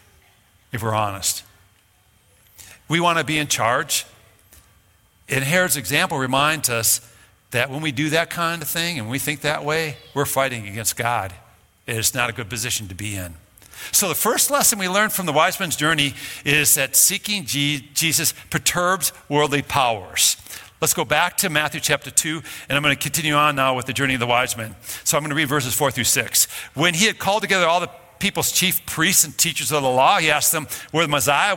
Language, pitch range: English, 120-165 Hz